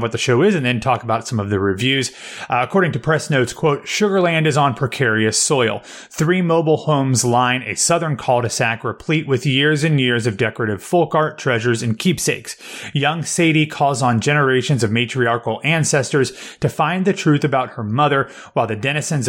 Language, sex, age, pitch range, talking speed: English, male, 30-49, 120-155 Hz, 185 wpm